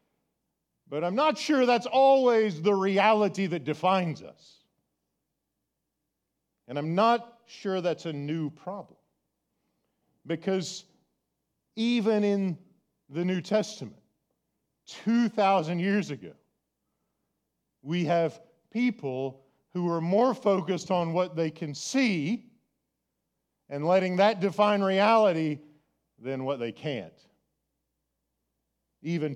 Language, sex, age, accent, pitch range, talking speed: English, male, 40-59, American, 145-215 Hz, 100 wpm